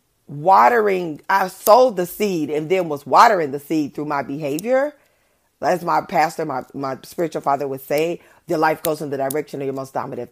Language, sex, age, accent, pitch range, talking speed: English, female, 30-49, American, 145-210 Hz, 190 wpm